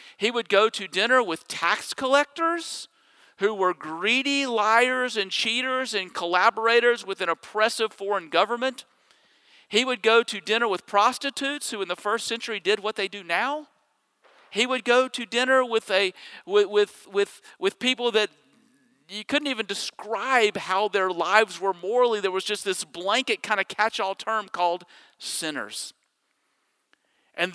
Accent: American